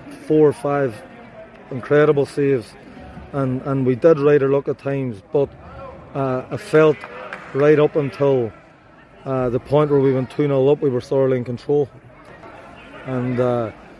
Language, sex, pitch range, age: English, male, 125-140 Hz, 20-39